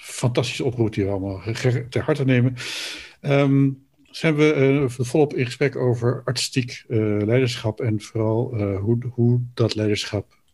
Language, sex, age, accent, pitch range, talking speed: Dutch, male, 50-69, Dutch, 110-135 Hz, 140 wpm